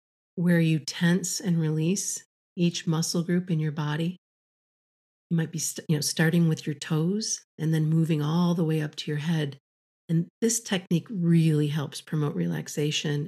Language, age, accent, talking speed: English, 50-69, American, 170 wpm